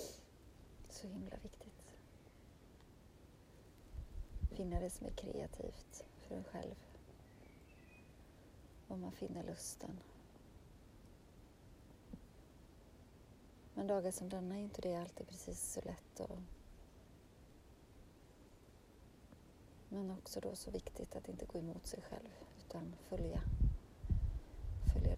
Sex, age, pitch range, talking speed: female, 30-49, 80-95 Hz, 100 wpm